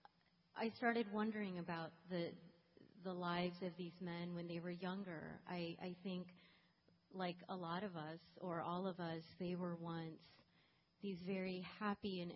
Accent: American